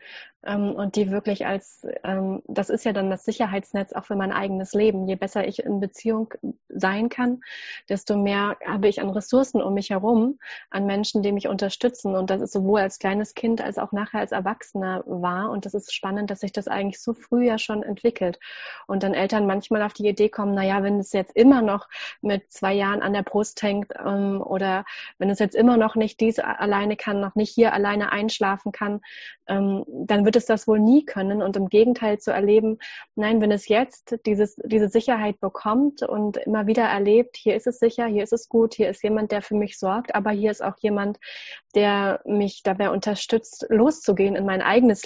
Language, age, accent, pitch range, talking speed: German, 30-49, German, 195-225 Hz, 200 wpm